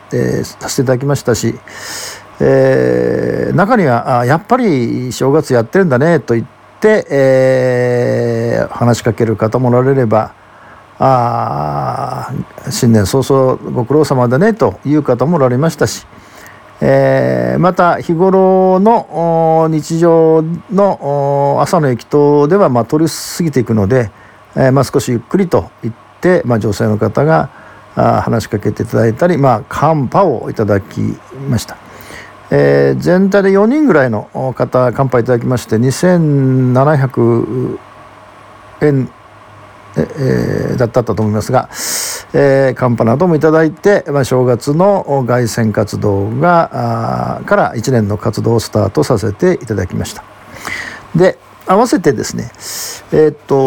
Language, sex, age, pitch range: Japanese, male, 50-69, 115-160 Hz